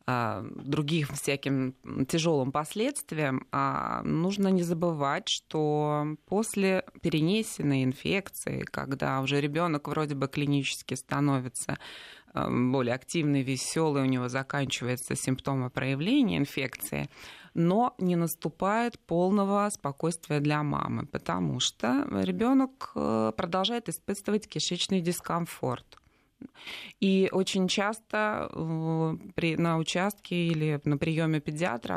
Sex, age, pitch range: female, 20-39, 140-190 Hz